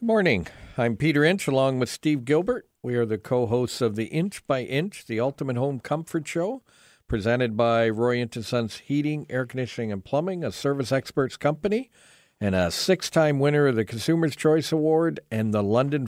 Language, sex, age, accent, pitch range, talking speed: English, male, 50-69, American, 110-145 Hz, 180 wpm